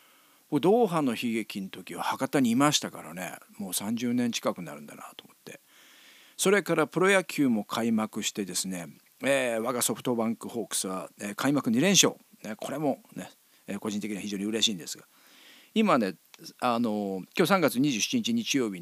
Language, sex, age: Japanese, male, 40-59